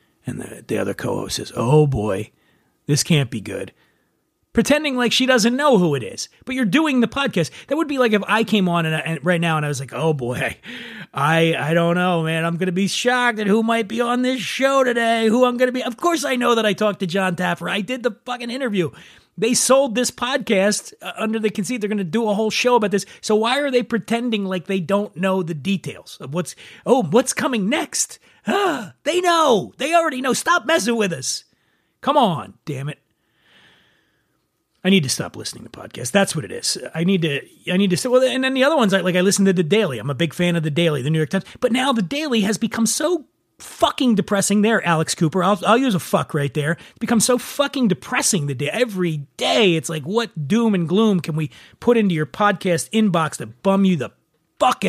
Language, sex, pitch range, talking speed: English, male, 170-245 Hz, 235 wpm